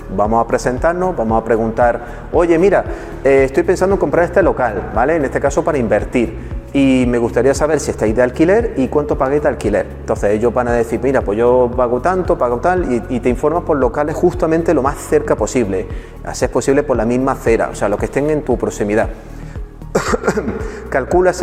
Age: 30-49